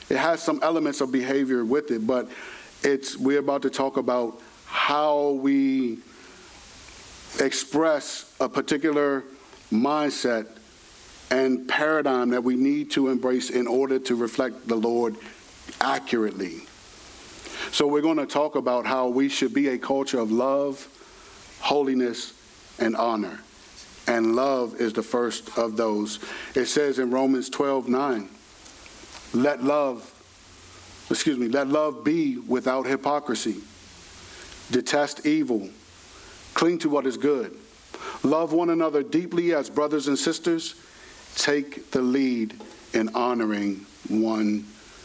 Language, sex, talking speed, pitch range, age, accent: English, male, 125 wpm, 120-150 Hz, 50-69, American